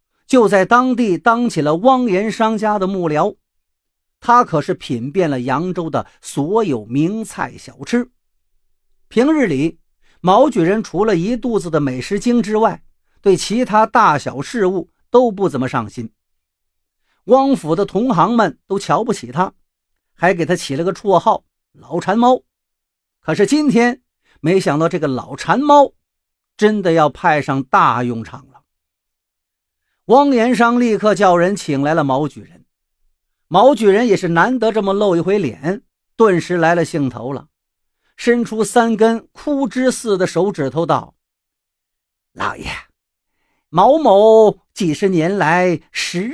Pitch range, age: 135-220 Hz, 50-69